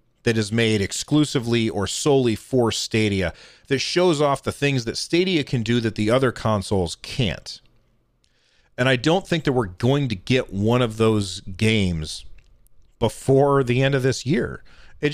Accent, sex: American, male